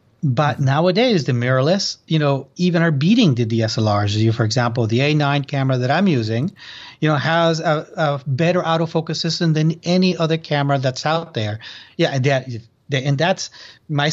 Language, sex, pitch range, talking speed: English, male, 115-150 Hz, 175 wpm